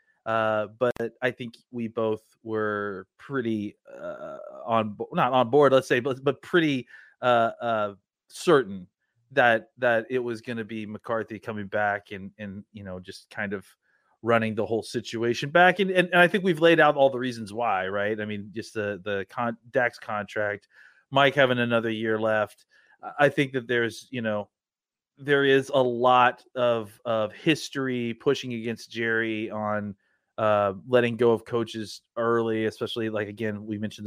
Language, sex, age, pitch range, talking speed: English, male, 30-49, 110-140 Hz, 175 wpm